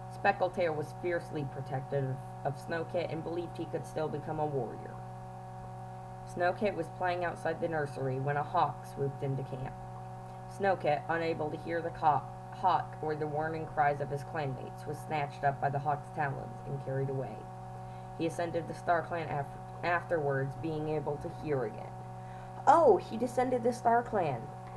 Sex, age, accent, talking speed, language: female, 20-39, American, 170 wpm, English